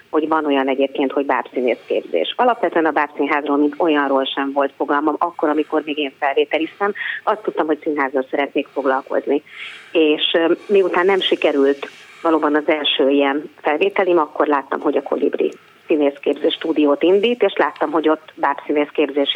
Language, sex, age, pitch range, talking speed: Hungarian, female, 30-49, 145-180 Hz, 150 wpm